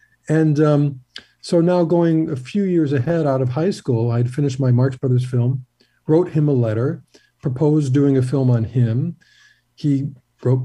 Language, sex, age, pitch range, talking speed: English, male, 50-69, 125-160 Hz, 175 wpm